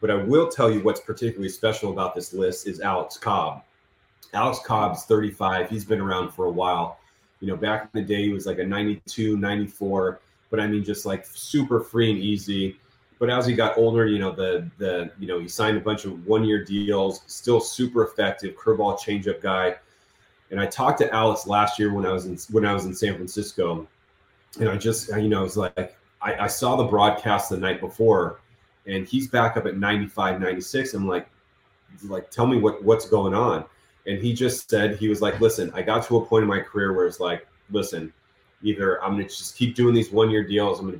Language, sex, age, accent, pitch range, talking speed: English, male, 30-49, American, 95-110 Hz, 215 wpm